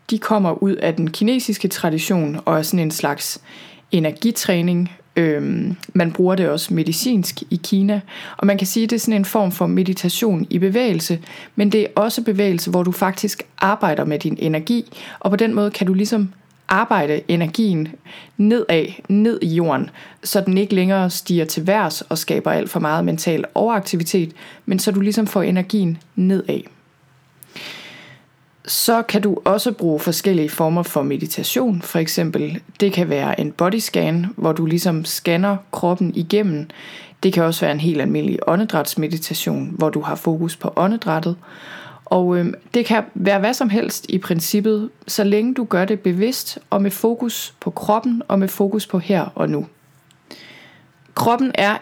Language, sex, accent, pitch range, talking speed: Danish, female, native, 170-210 Hz, 170 wpm